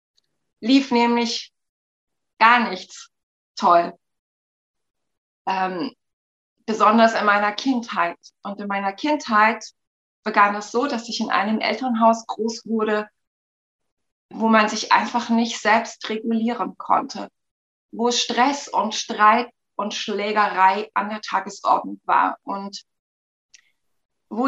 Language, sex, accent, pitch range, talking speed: German, female, German, 205-240 Hz, 110 wpm